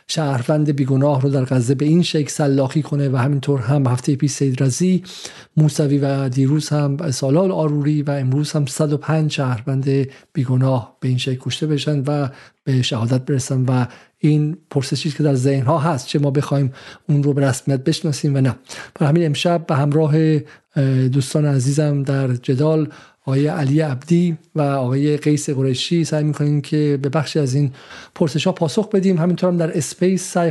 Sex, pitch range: male, 135-155 Hz